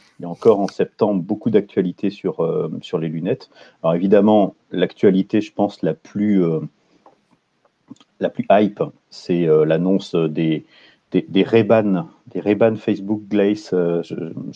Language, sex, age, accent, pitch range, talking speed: French, male, 40-59, French, 85-100 Hz, 155 wpm